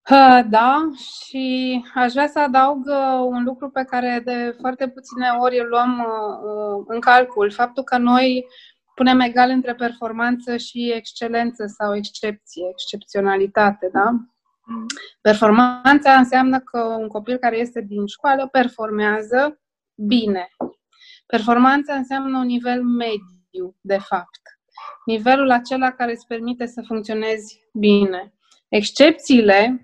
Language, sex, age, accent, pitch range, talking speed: Romanian, female, 20-39, native, 205-255 Hz, 115 wpm